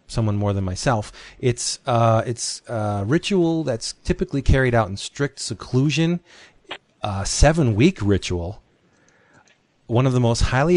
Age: 40-59